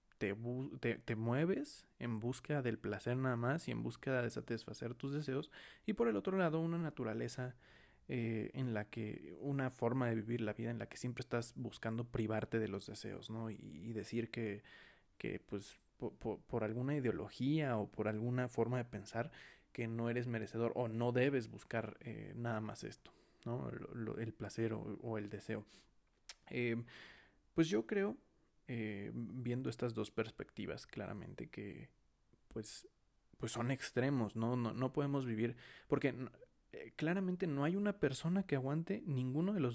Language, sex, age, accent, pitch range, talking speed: Spanish, male, 20-39, Mexican, 115-140 Hz, 175 wpm